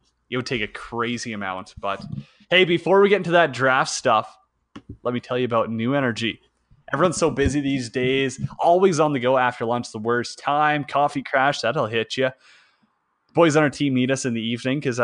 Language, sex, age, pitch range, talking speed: English, male, 20-39, 120-145 Hz, 205 wpm